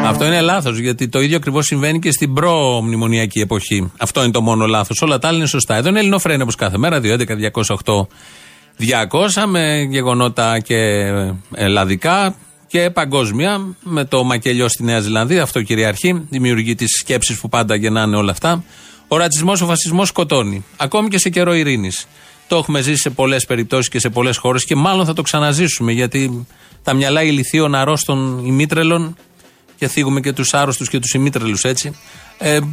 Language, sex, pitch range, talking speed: Greek, male, 115-160 Hz, 170 wpm